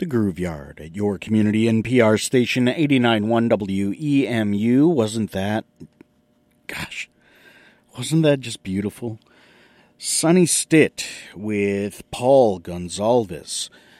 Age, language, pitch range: 40-59, English, 100-145 Hz